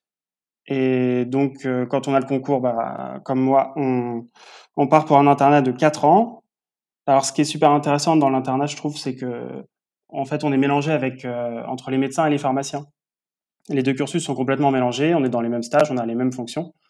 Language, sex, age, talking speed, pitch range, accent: French, male, 20-39, 220 wpm, 125-145 Hz, French